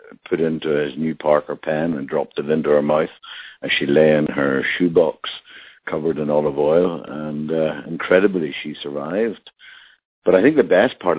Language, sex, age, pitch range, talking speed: English, male, 60-79, 75-85 Hz, 175 wpm